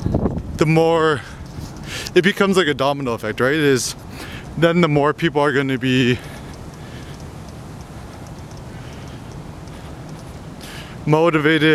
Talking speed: 100 wpm